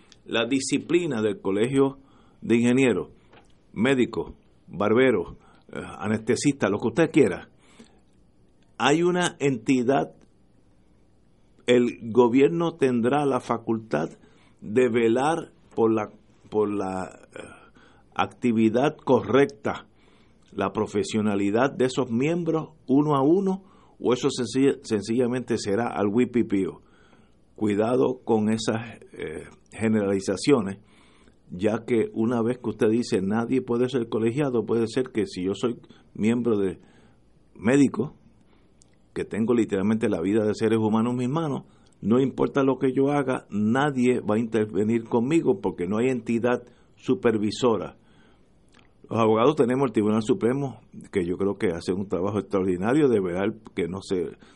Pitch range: 110-130 Hz